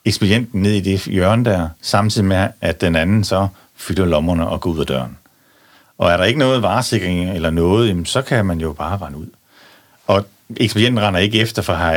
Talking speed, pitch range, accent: 205 wpm, 80-105 Hz, native